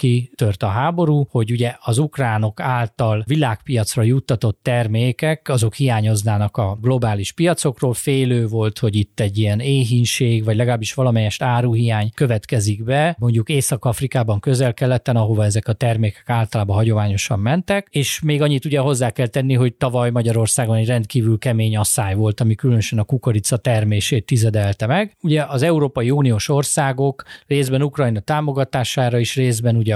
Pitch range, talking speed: 110-135 Hz, 145 wpm